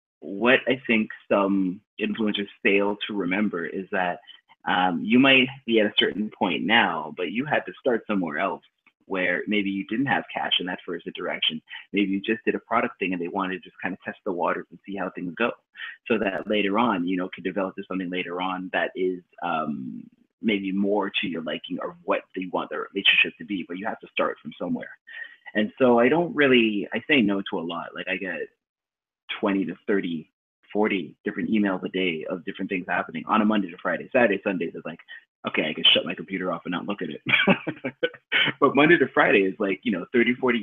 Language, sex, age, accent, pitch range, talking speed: English, male, 30-49, American, 95-110 Hz, 220 wpm